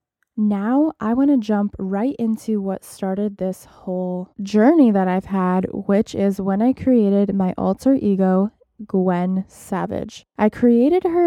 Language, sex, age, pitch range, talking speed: English, female, 20-39, 195-230 Hz, 150 wpm